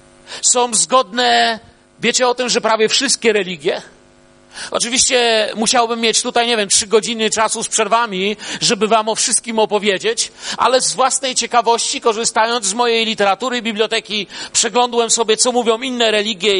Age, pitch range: 40-59, 210-245 Hz